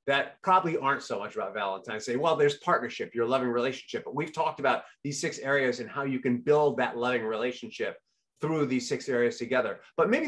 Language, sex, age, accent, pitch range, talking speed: English, male, 30-49, American, 135-210 Hz, 210 wpm